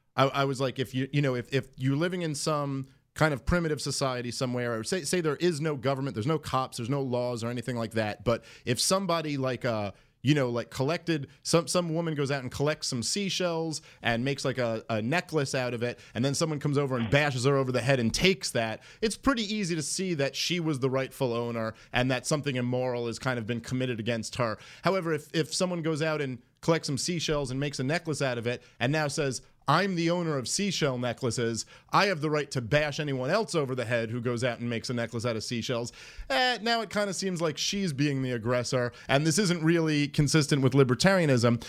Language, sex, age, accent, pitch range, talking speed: English, male, 30-49, American, 130-175 Hz, 235 wpm